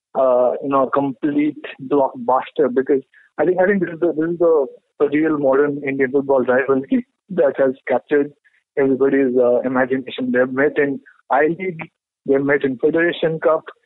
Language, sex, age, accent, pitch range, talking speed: English, male, 50-69, Indian, 140-170 Hz, 150 wpm